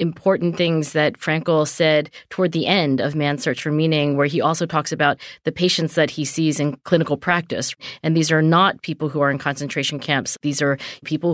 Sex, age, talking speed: female, 30-49, 205 wpm